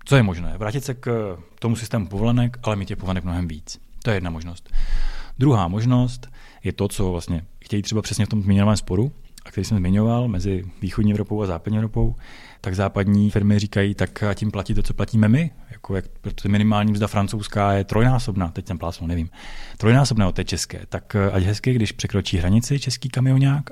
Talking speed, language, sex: 195 wpm, Czech, male